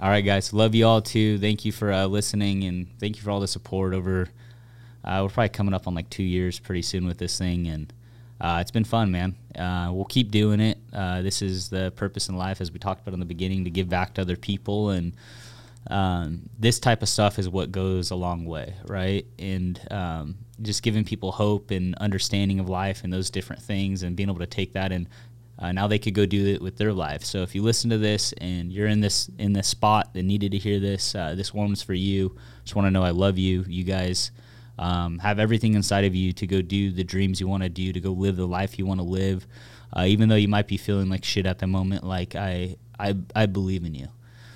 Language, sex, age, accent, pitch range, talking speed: English, male, 20-39, American, 95-105 Hz, 250 wpm